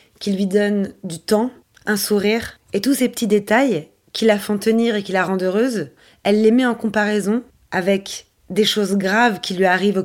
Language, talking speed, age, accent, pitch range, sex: French, 205 wpm, 20-39, French, 185-220 Hz, female